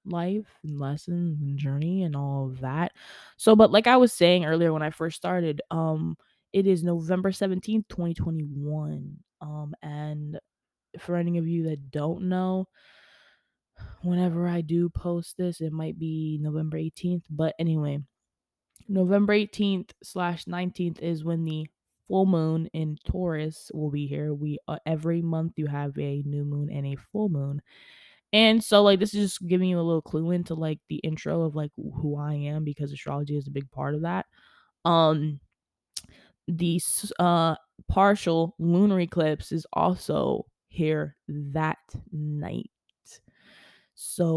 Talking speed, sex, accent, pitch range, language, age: 155 wpm, female, American, 150-180 Hz, English, 20-39